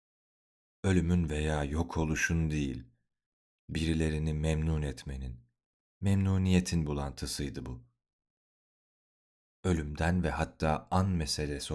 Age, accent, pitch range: 40-59, native, 70-90 Hz